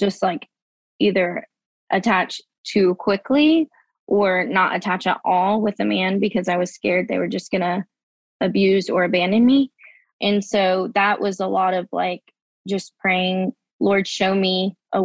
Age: 20-39